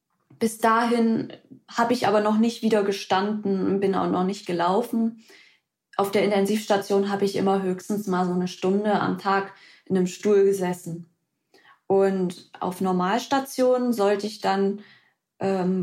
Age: 20-39